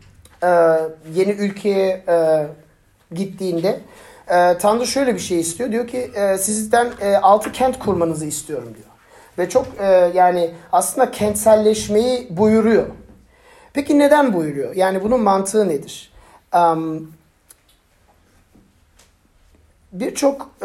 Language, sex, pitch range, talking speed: Turkish, male, 165-215 Hz, 110 wpm